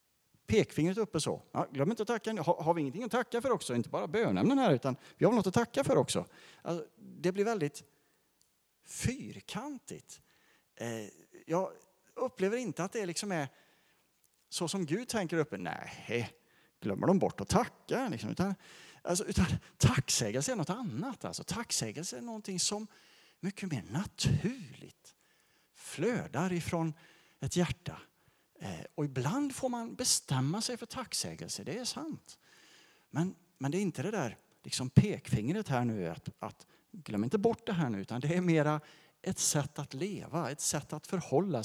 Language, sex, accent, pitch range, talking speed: English, male, Norwegian, 145-200 Hz, 165 wpm